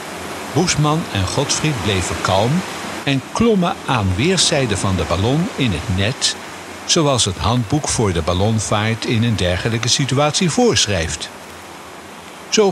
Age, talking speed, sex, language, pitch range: 60-79, 125 wpm, male, Dutch, 105-155 Hz